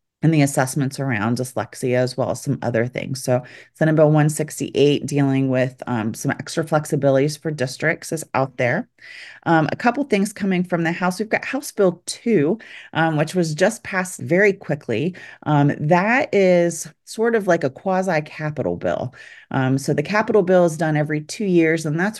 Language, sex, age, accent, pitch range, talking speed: English, female, 30-49, American, 135-170 Hz, 180 wpm